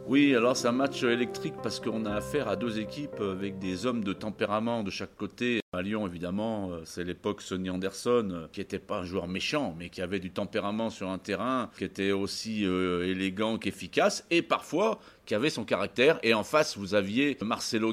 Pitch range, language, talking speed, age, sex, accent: 95-125 Hz, French, 200 wpm, 40-59, male, French